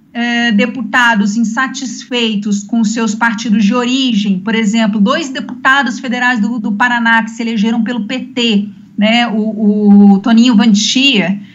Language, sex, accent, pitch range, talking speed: Portuguese, female, Brazilian, 220-275 Hz, 130 wpm